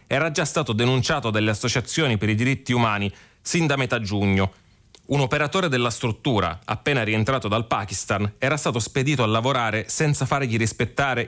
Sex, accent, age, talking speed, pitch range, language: male, native, 30-49, 160 wpm, 105-135 Hz, Italian